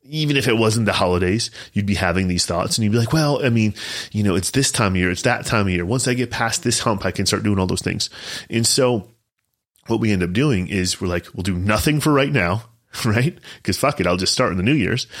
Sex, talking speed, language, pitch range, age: male, 275 wpm, English, 95-125 Hz, 30-49